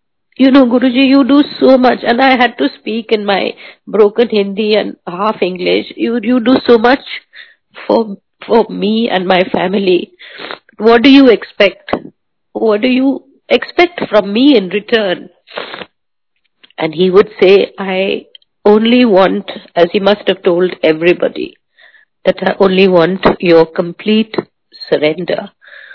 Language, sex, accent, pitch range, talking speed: Hindi, female, native, 190-250 Hz, 145 wpm